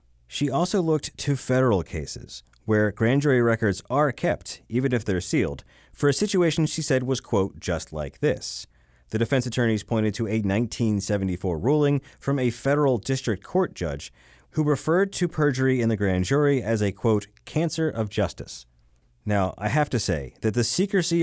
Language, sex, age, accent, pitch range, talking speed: English, male, 30-49, American, 100-145 Hz, 175 wpm